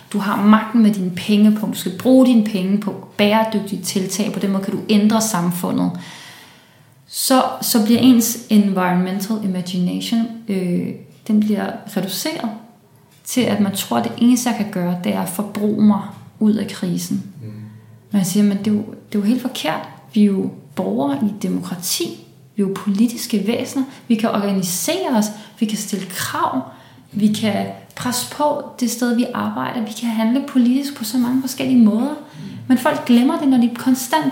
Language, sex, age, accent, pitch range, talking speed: Danish, female, 30-49, native, 180-230 Hz, 180 wpm